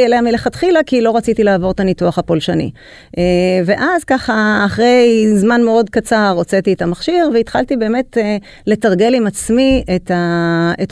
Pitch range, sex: 175-220 Hz, female